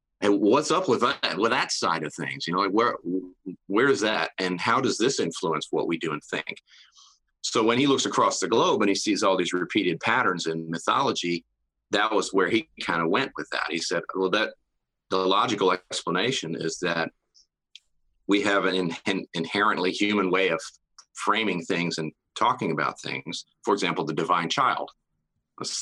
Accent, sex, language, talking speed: American, male, English, 190 wpm